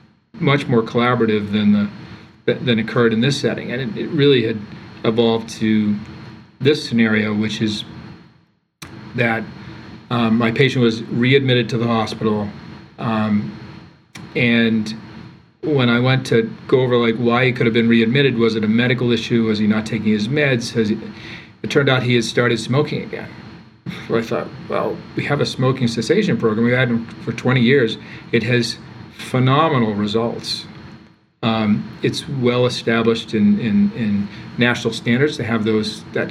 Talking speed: 165 wpm